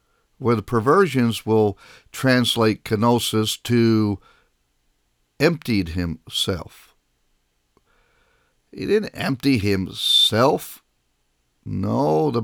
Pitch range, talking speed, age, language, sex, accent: 80-120 Hz, 70 wpm, 50-69, English, male, American